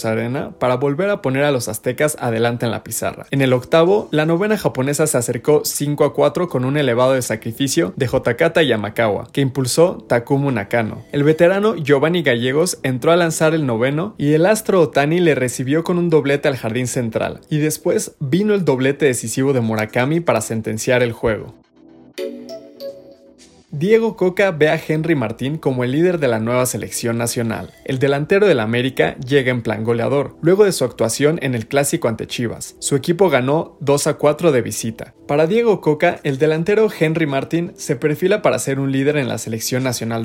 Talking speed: 185 wpm